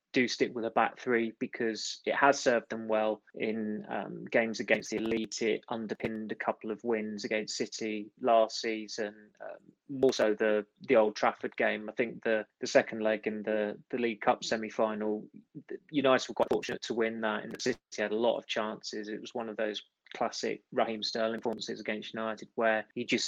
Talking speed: 195 wpm